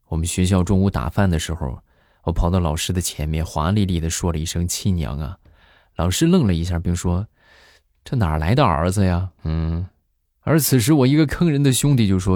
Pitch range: 80-100 Hz